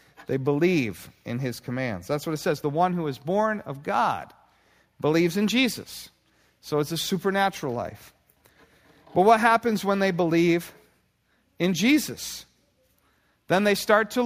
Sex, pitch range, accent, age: male, 150-200 Hz, American, 40-59